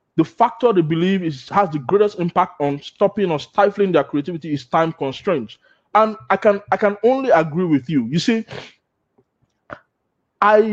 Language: English